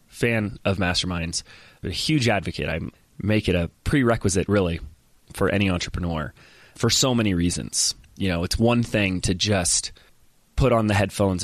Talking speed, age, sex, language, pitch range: 155 wpm, 30-49, male, English, 90-115 Hz